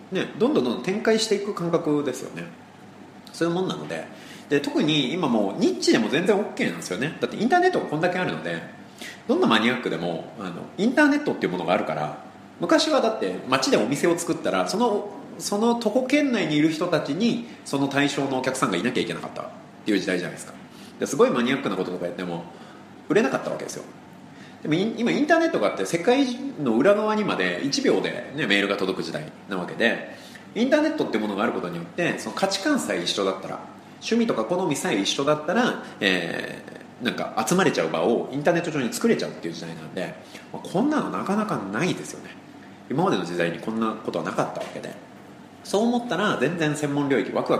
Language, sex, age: Japanese, male, 30-49